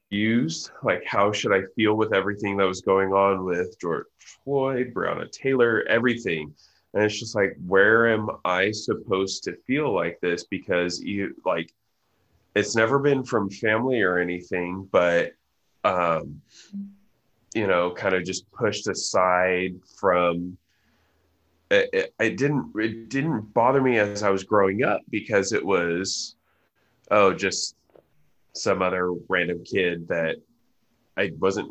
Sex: male